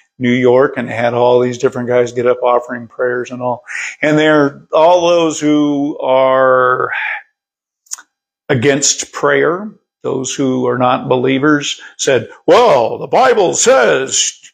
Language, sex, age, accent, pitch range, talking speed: English, male, 50-69, American, 140-230 Hz, 130 wpm